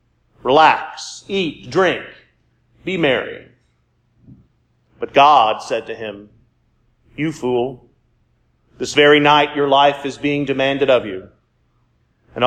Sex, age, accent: male, 40-59, American